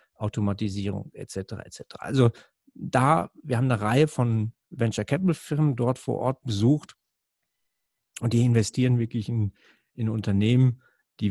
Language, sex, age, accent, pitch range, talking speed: German, male, 40-59, German, 105-135 Hz, 135 wpm